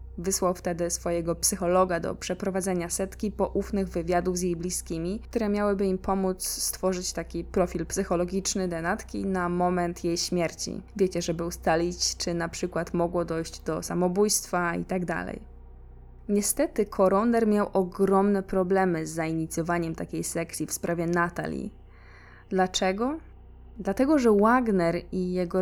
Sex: female